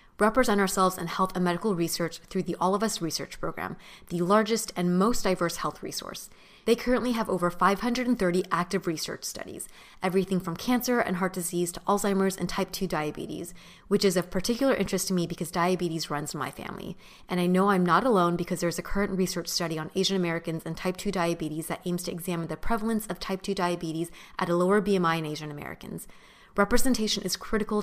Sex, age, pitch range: female, 20-39, 170-205 Hz